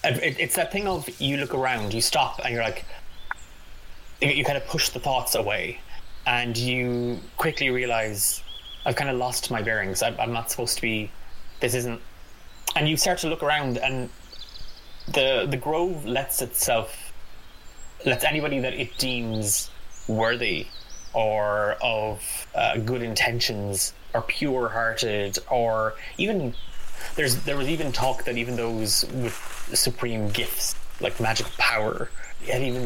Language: English